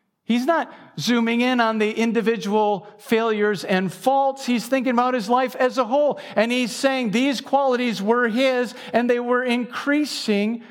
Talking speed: 160 wpm